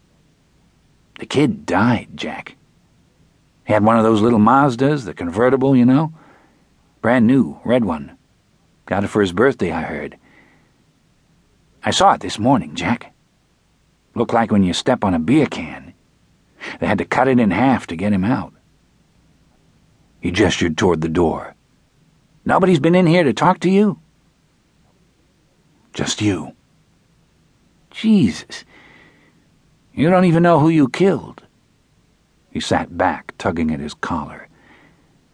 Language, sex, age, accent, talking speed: English, male, 60-79, American, 140 wpm